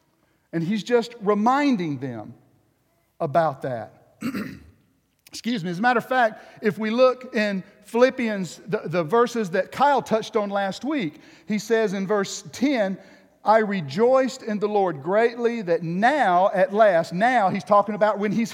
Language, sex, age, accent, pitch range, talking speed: English, male, 50-69, American, 185-255 Hz, 160 wpm